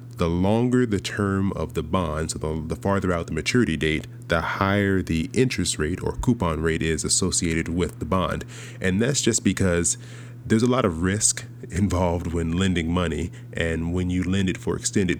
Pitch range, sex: 80-115 Hz, male